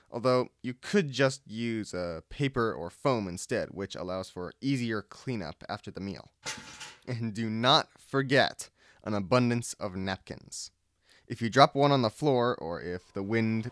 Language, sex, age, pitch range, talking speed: English, male, 20-39, 100-130 Hz, 160 wpm